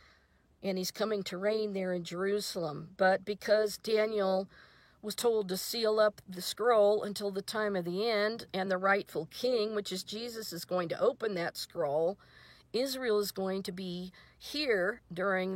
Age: 50-69